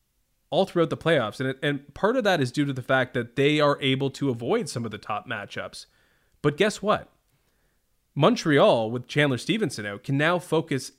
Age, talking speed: 20-39, 195 wpm